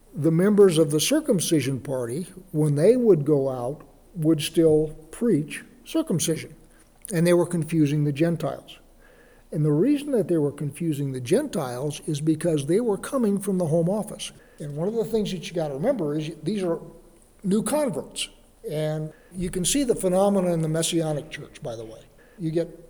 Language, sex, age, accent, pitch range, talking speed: English, male, 60-79, American, 160-200 Hz, 180 wpm